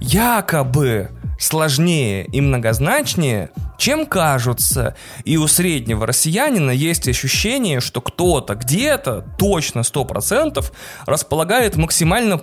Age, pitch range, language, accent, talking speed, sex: 20-39, 125-170 Hz, Russian, native, 90 wpm, male